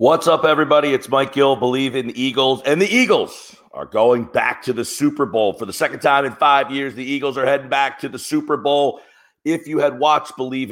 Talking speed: 230 wpm